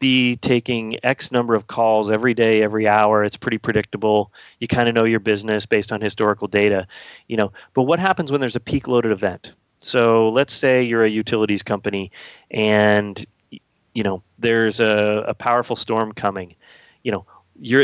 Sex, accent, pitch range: male, American, 105-135 Hz